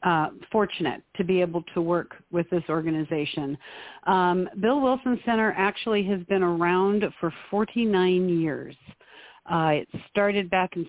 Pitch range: 175-205 Hz